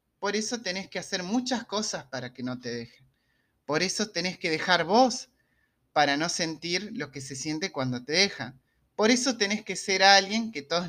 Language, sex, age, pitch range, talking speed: Spanish, male, 30-49, 140-195 Hz, 200 wpm